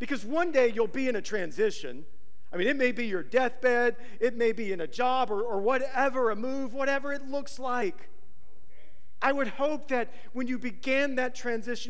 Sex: male